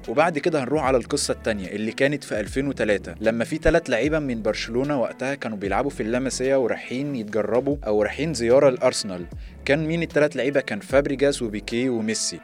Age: 20-39